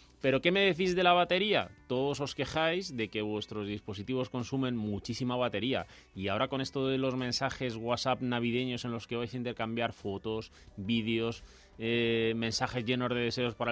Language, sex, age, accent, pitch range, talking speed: Spanish, male, 30-49, Spanish, 115-145 Hz, 175 wpm